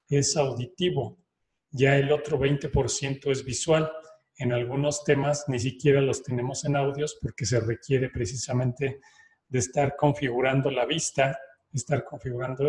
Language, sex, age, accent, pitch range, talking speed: Spanish, male, 40-59, Mexican, 130-150 Hz, 130 wpm